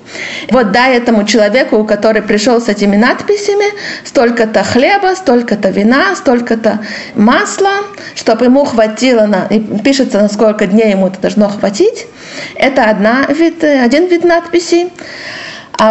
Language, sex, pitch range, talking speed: Russian, female, 220-290 Hz, 130 wpm